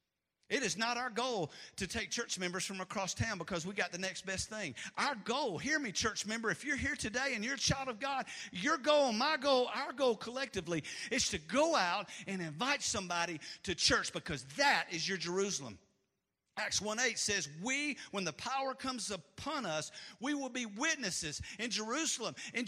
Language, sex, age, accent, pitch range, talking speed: English, male, 50-69, American, 220-295 Hz, 195 wpm